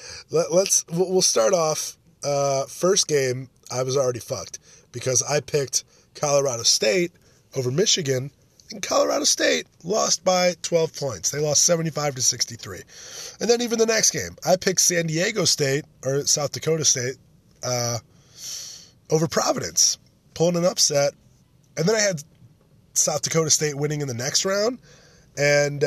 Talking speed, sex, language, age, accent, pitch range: 150 wpm, male, English, 20-39, American, 120-160 Hz